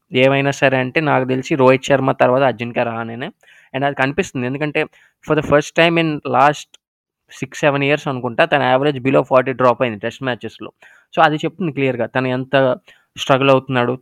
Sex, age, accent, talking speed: male, 20-39, native, 175 wpm